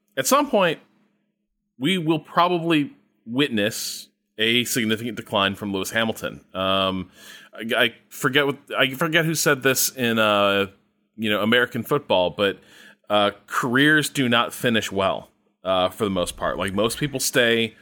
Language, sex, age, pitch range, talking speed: English, male, 30-49, 100-135 Hz, 150 wpm